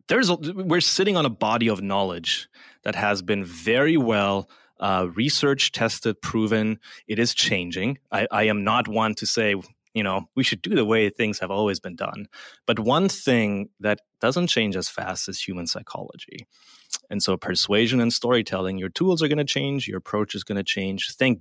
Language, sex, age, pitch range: English, male, 20-39, 95-120 Hz